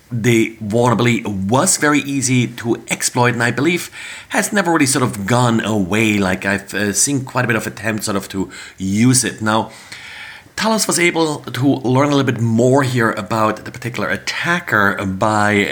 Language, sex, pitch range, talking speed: English, male, 100-125 Hz, 175 wpm